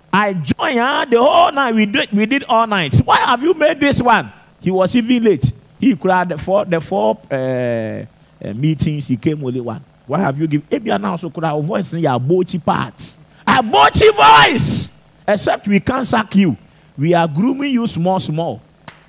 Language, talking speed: English, 190 wpm